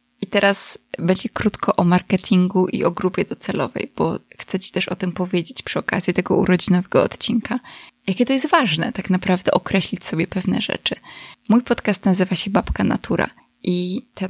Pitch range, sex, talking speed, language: 185-225 Hz, female, 170 wpm, Polish